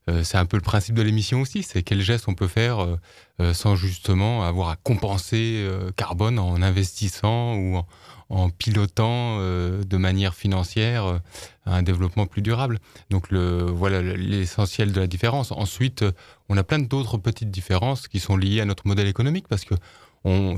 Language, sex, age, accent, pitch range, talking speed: French, male, 20-39, French, 95-115 Hz, 165 wpm